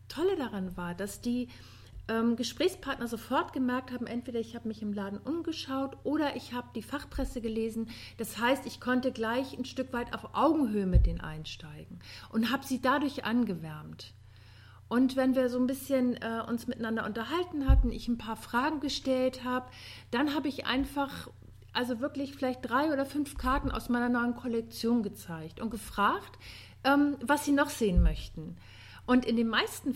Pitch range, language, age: 200-265 Hz, German, 50-69